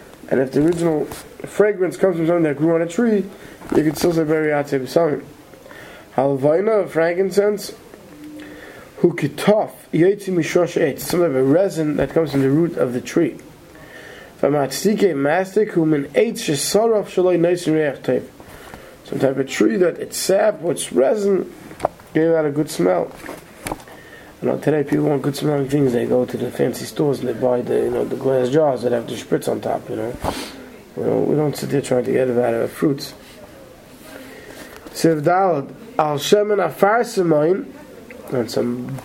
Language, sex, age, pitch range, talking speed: English, male, 20-39, 140-185 Hz, 170 wpm